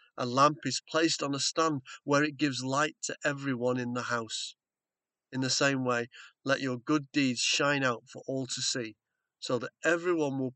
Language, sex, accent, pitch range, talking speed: English, male, British, 120-145 Hz, 195 wpm